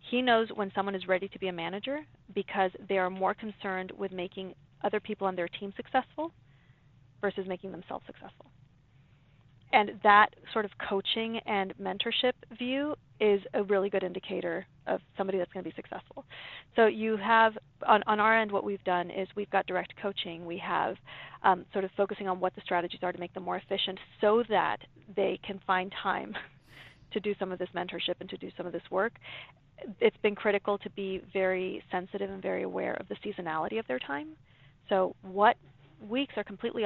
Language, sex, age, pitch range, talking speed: English, female, 30-49, 180-210 Hz, 190 wpm